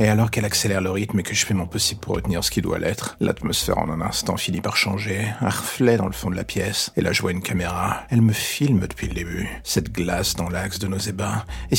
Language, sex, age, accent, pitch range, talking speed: French, male, 40-59, French, 95-105 Hz, 270 wpm